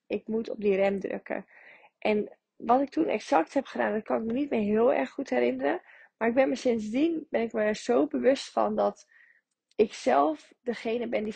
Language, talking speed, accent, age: Dutch, 210 wpm, Dutch, 20-39